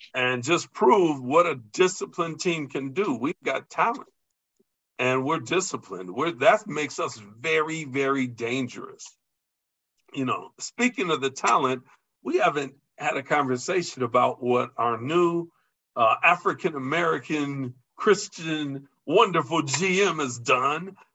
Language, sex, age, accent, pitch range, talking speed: English, male, 50-69, American, 125-175 Hz, 125 wpm